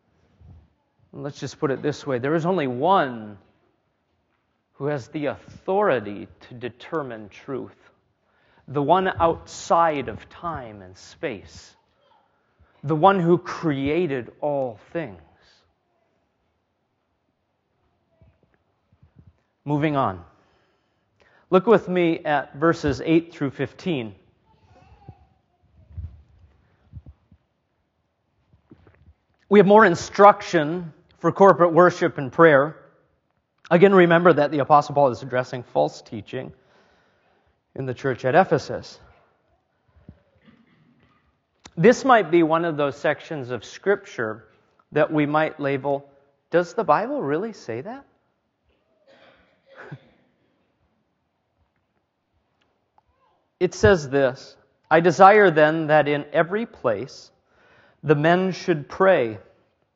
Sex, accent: male, American